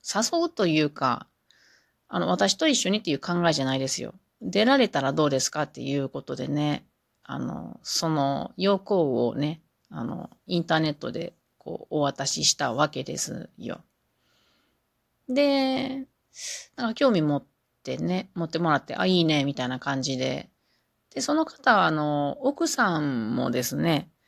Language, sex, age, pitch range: Japanese, female, 30-49, 140-205 Hz